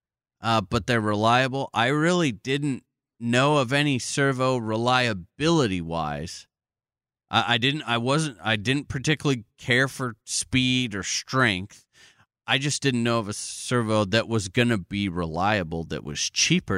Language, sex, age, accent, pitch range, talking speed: English, male, 30-49, American, 105-135 Hz, 145 wpm